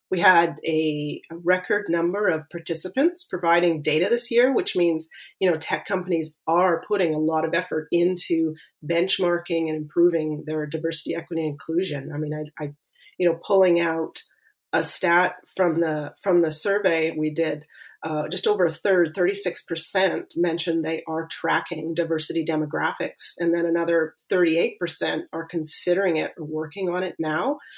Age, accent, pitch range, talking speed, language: 30-49, American, 160-190 Hz, 165 wpm, English